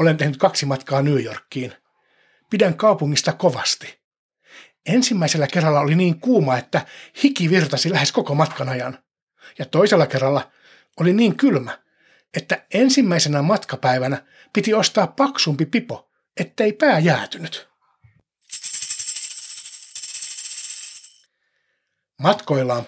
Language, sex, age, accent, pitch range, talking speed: Finnish, male, 60-79, native, 135-195 Hz, 100 wpm